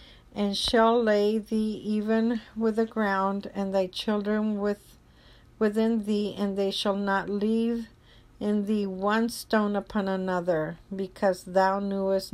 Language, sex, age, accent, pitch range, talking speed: English, female, 50-69, American, 180-210 Hz, 135 wpm